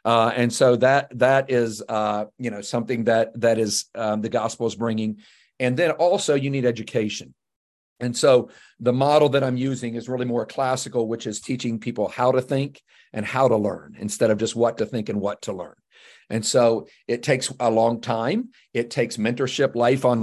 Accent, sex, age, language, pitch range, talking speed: American, male, 50-69, English, 115-135 Hz, 200 wpm